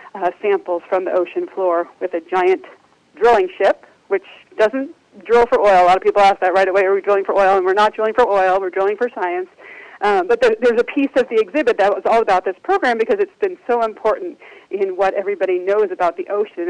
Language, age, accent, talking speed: English, 40-59, American, 235 wpm